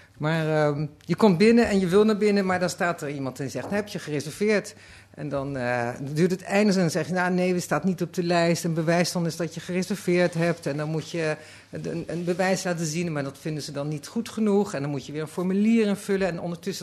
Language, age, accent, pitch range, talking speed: Dutch, 50-69, Dutch, 135-180 Hz, 260 wpm